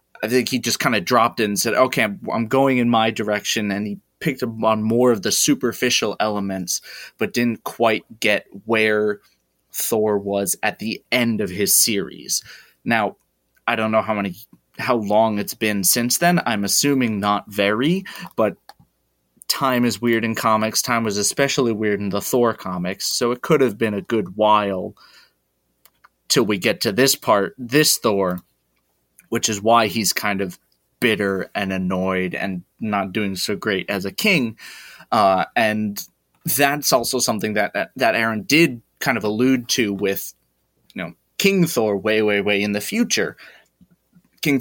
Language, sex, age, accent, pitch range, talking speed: English, male, 20-39, American, 100-125 Hz, 170 wpm